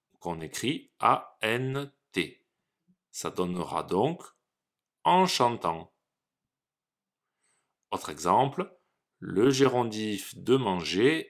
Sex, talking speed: male, 75 wpm